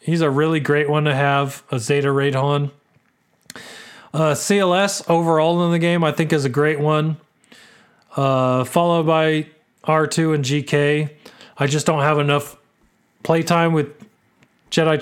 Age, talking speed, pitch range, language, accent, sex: 30-49, 150 wpm, 135-165 Hz, English, American, male